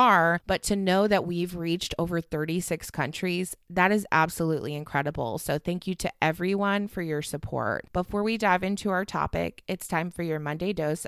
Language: English